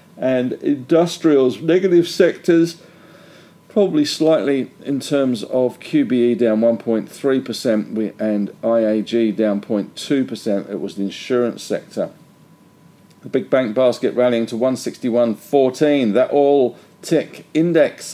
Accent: British